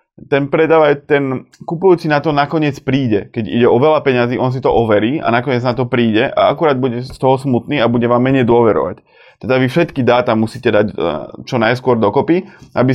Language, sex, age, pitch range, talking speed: Slovak, male, 20-39, 120-150 Hz, 200 wpm